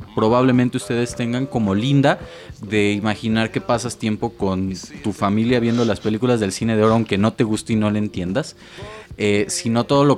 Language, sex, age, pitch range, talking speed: Spanish, male, 20-39, 105-125 Hz, 190 wpm